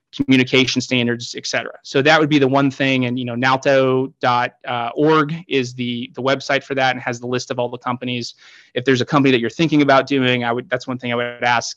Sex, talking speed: male, 240 wpm